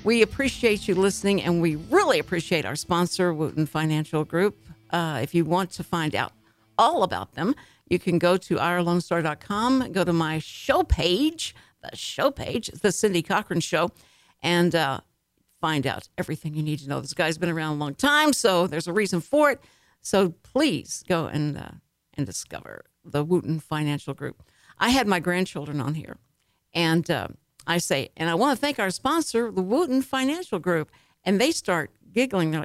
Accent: American